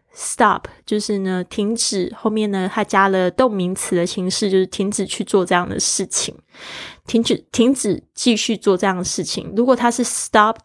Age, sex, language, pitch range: 20-39, female, Chinese, 185-225 Hz